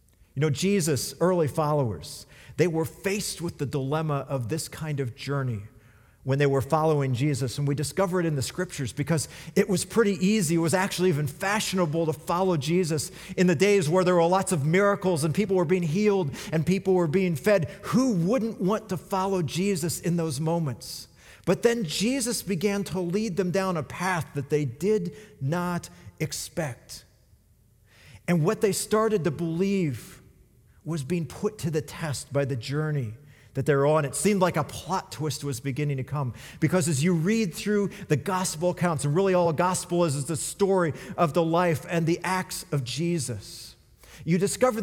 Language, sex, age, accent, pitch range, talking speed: English, male, 40-59, American, 140-185 Hz, 185 wpm